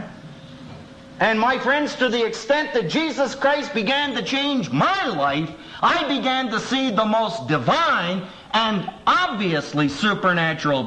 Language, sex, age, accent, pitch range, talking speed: English, male, 50-69, American, 135-220 Hz, 135 wpm